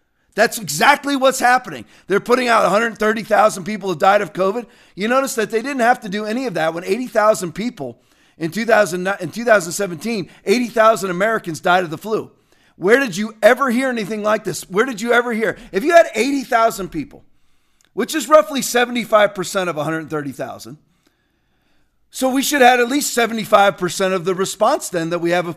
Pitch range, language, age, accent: 180-245 Hz, English, 40-59, American